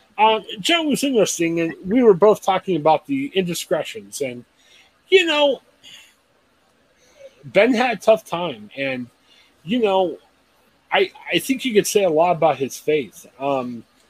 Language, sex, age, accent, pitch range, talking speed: English, male, 30-49, American, 135-200 Hz, 150 wpm